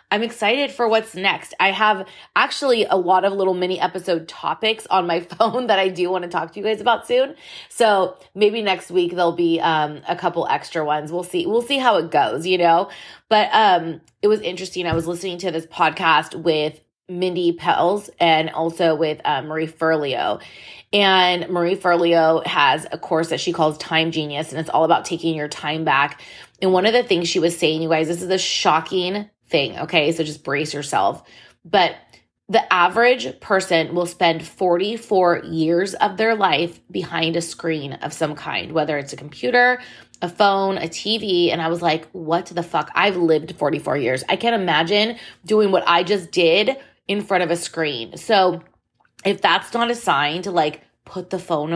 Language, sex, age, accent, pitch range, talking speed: English, female, 20-39, American, 165-195 Hz, 195 wpm